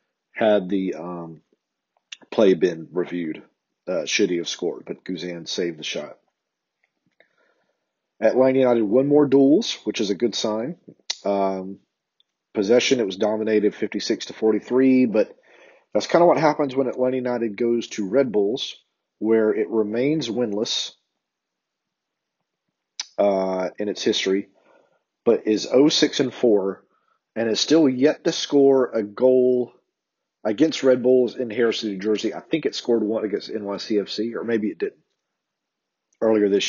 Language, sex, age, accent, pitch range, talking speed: English, male, 40-59, American, 105-130 Hz, 140 wpm